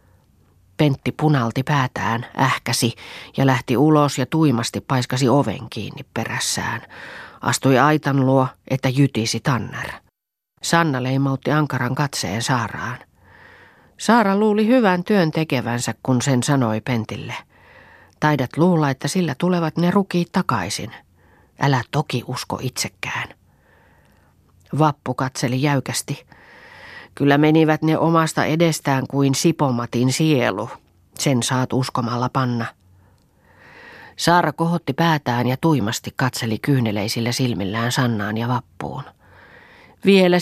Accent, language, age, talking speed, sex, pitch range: native, Finnish, 40-59, 105 wpm, female, 115-155 Hz